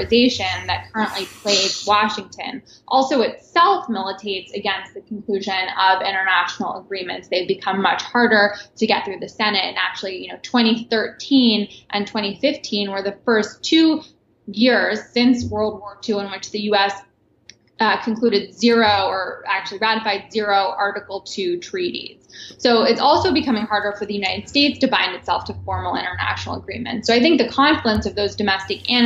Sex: female